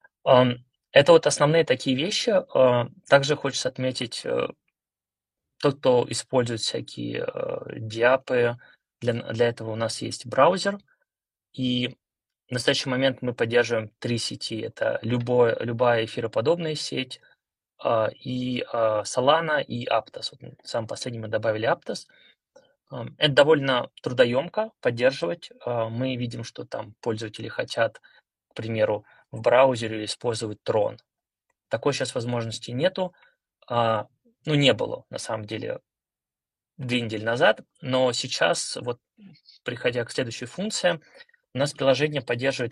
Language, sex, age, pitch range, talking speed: Russian, male, 20-39, 115-140 Hz, 115 wpm